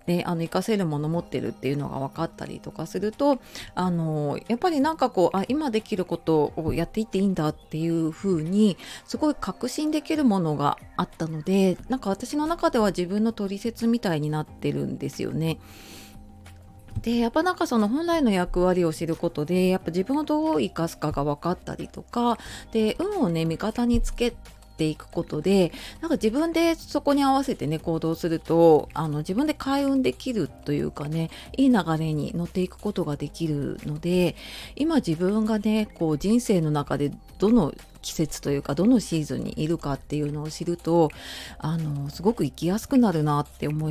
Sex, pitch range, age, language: female, 155-225 Hz, 30-49, Japanese